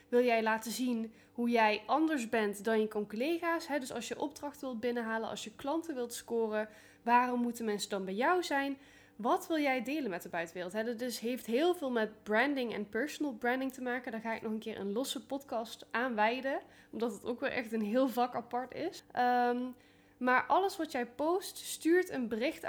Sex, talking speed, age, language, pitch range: female, 200 wpm, 10-29, Dutch, 225-275 Hz